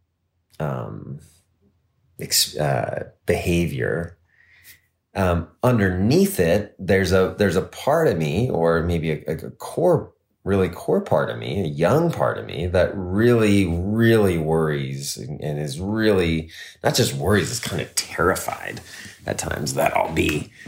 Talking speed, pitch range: 140 wpm, 80-100 Hz